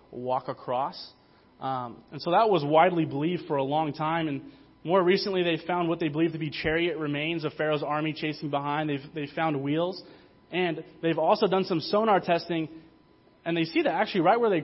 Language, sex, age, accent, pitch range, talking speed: English, male, 20-39, American, 155-210 Hz, 195 wpm